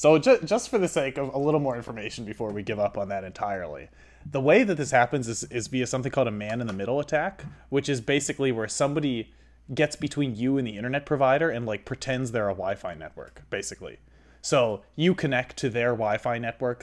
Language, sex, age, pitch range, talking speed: English, male, 20-39, 100-130 Hz, 205 wpm